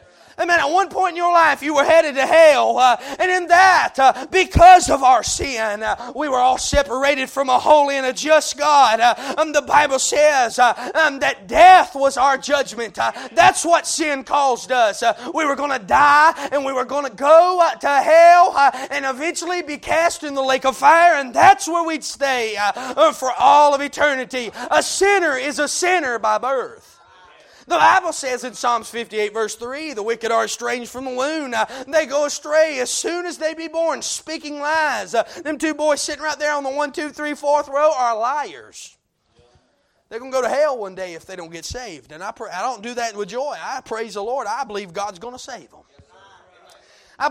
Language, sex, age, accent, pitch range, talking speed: English, male, 30-49, American, 245-310 Hz, 215 wpm